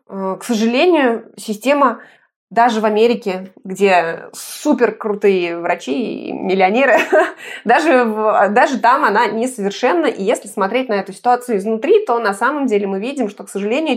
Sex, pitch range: female, 205-255 Hz